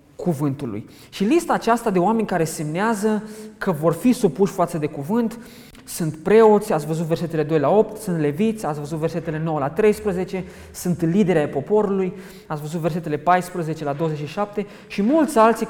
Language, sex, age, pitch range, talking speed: English, male, 20-39, 165-225 Hz, 165 wpm